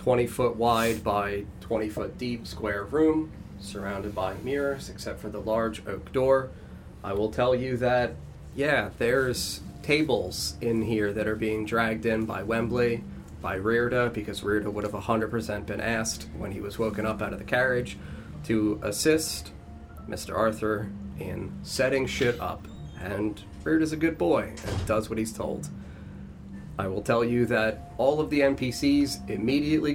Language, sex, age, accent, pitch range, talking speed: English, male, 30-49, American, 95-120 Hz, 165 wpm